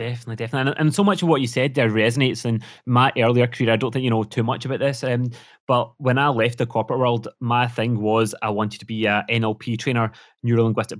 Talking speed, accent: 240 wpm, British